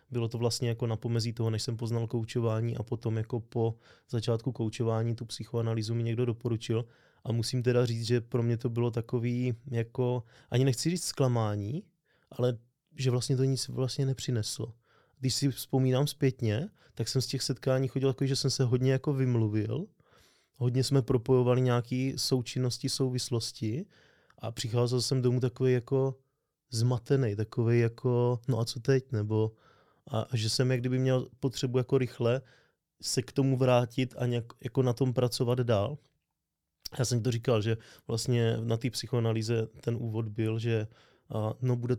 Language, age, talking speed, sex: Czech, 20-39, 165 wpm, male